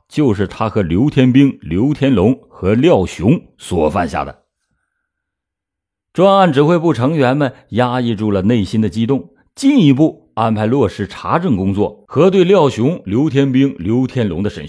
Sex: male